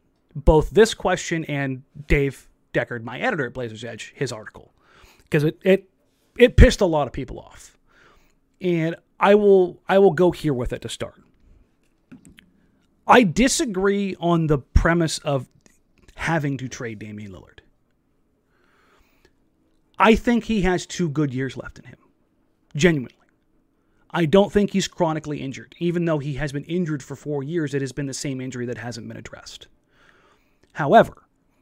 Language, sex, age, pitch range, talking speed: English, male, 30-49, 130-180 Hz, 155 wpm